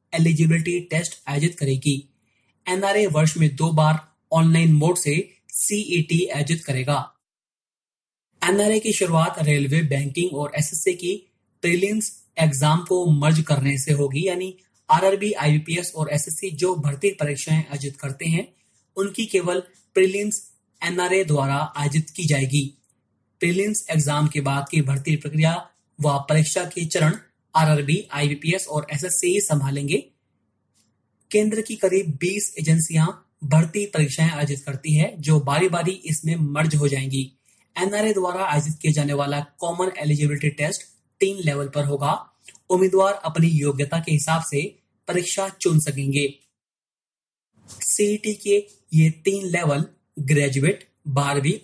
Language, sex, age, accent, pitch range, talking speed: Hindi, male, 30-49, native, 145-185 Hz, 105 wpm